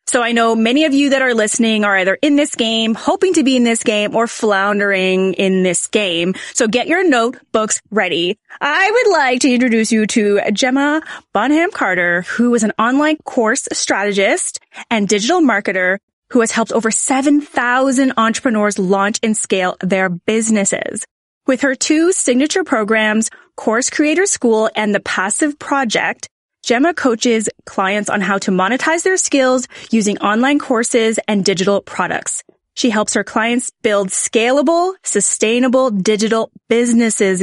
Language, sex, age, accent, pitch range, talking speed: English, female, 30-49, American, 200-275 Hz, 155 wpm